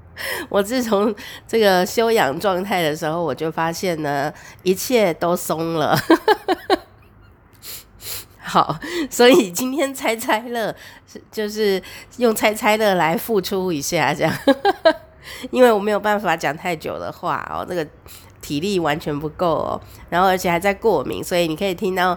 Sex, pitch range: female, 165-225 Hz